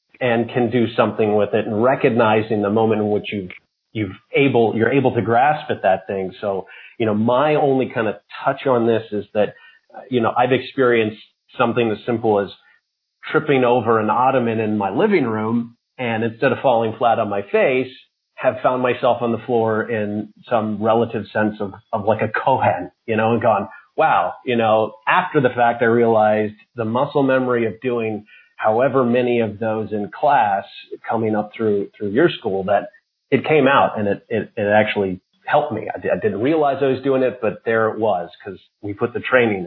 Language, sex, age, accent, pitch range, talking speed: English, male, 40-59, American, 105-125 Hz, 200 wpm